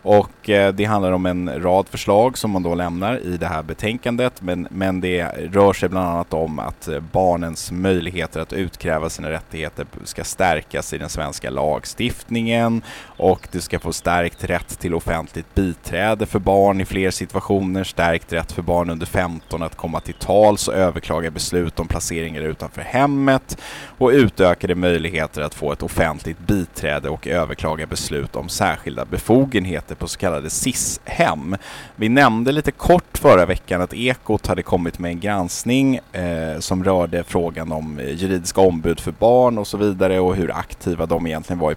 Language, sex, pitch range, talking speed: Swedish, male, 85-105 Hz, 170 wpm